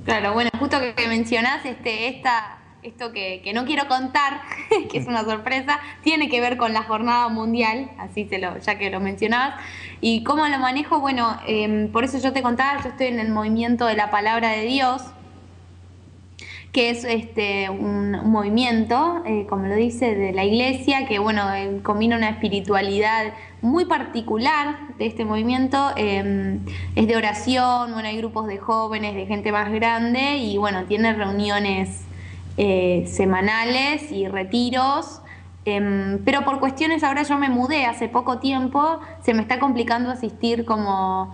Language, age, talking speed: Spanish, 10-29, 165 wpm